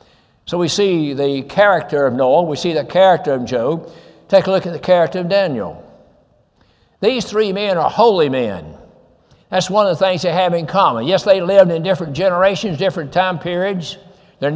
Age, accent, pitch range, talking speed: 60-79, American, 160-190 Hz, 190 wpm